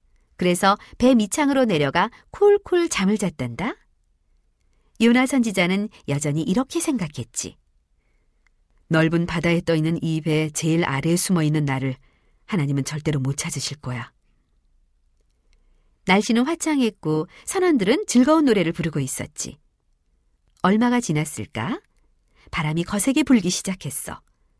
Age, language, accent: 40-59, Korean, native